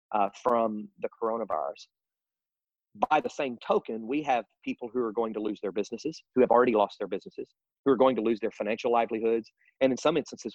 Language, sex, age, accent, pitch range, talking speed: English, male, 40-59, American, 105-120 Hz, 205 wpm